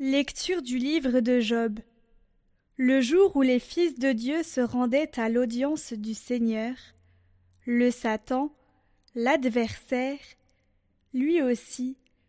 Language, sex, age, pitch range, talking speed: French, female, 20-39, 235-280 Hz, 110 wpm